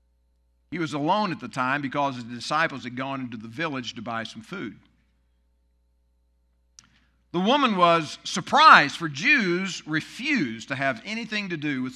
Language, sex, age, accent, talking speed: English, male, 50-69, American, 155 wpm